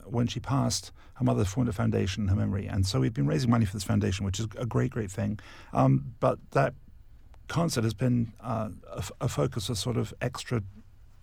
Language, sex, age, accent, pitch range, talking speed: English, male, 50-69, British, 100-120 Hz, 220 wpm